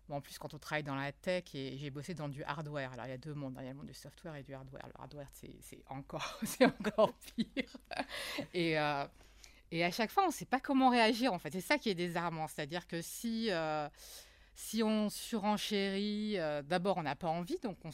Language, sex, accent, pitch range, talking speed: French, female, French, 145-195 Hz, 250 wpm